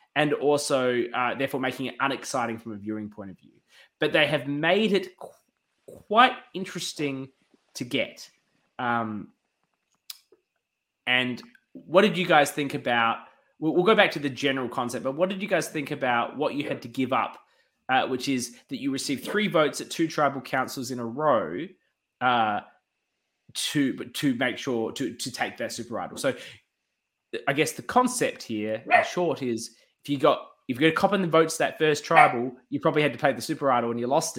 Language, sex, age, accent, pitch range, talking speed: English, male, 20-39, Australian, 120-175 Hz, 195 wpm